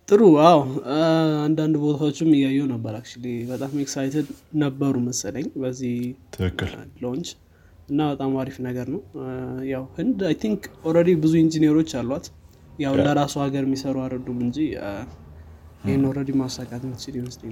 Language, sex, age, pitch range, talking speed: Amharic, male, 20-39, 130-155 Hz, 145 wpm